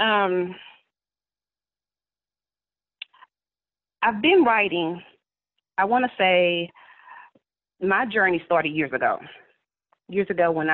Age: 30-49